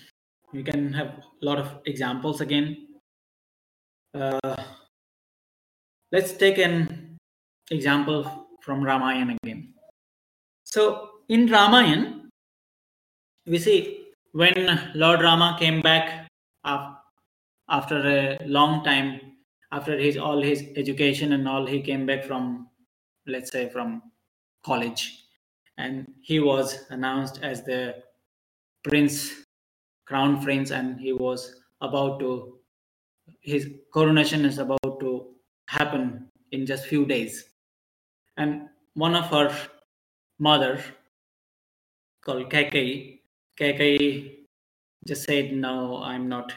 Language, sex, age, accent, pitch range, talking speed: English, male, 20-39, Indian, 130-150 Hz, 105 wpm